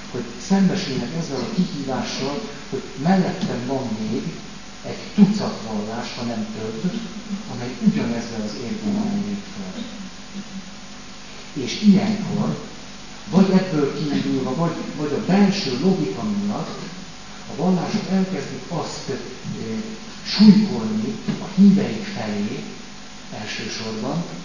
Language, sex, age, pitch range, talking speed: Hungarian, male, 60-79, 170-210 Hz, 105 wpm